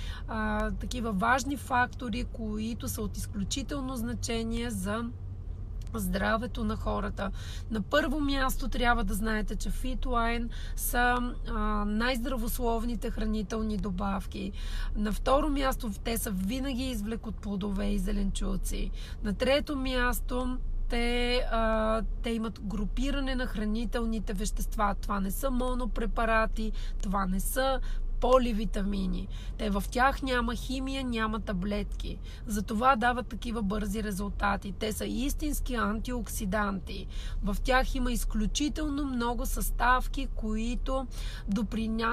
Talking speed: 115 wpm